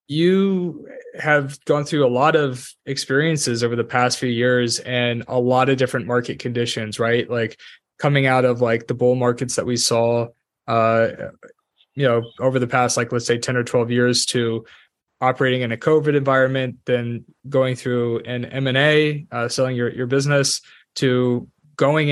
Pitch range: 125-140 Hz